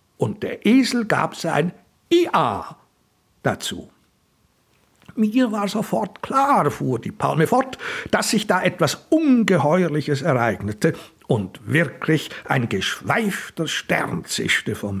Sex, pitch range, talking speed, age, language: male, 140-215 Hz, 110 wpm, 60-79, German